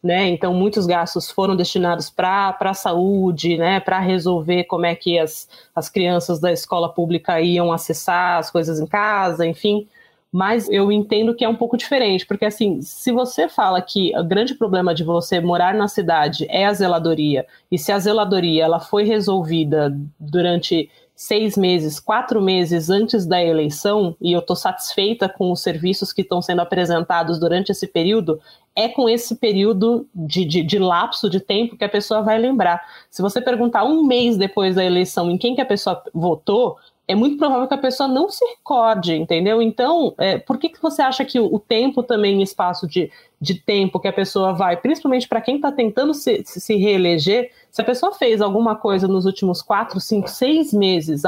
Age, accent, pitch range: 20-39, Brazilian, 175-220 Hz